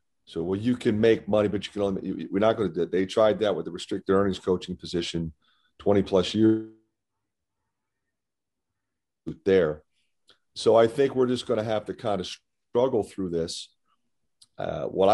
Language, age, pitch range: English, 40-59, 95-110 Hz